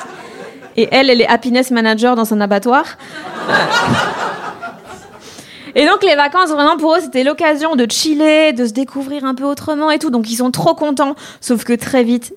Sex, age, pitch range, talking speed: female, 20-39, 240-290 Hz, 180 wpm